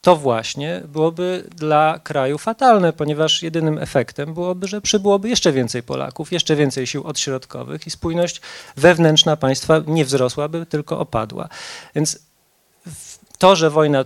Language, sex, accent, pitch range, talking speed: Polish, male, native, 135-180 Hz, 130 wpm